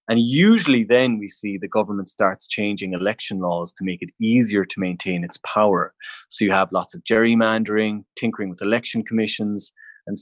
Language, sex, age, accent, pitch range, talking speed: English, male, 30-49, Irish, 100-125 Hz, 175 wpm